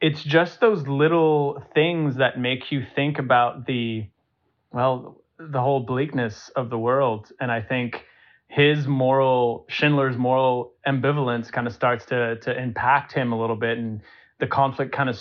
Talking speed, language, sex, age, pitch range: 160 wpm, English, male, 30-49, 125-145 Hz